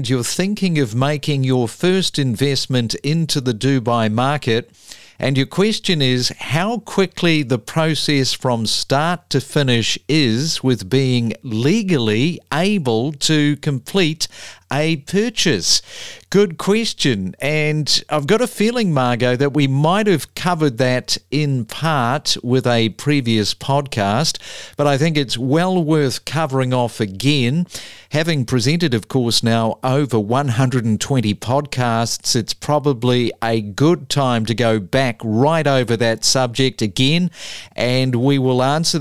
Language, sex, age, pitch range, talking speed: English, male, 50-69, 115-150 Hz, 130 wpm